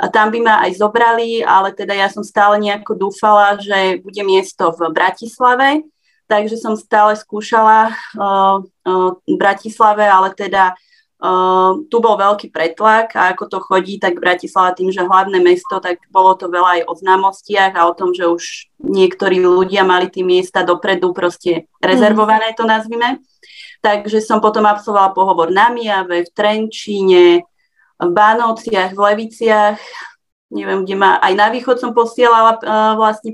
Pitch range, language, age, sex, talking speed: 185-220 Hz, Slovak, 30-49, female, 160 wpm